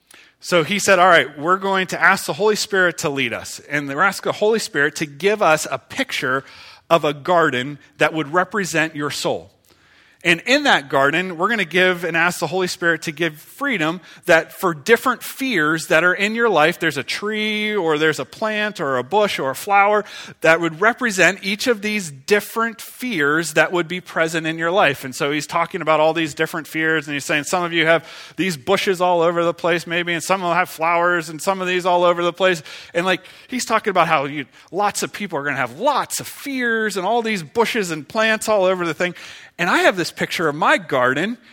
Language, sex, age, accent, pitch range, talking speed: English, male, 30-49, American, 165-225 Hz, 230 wpm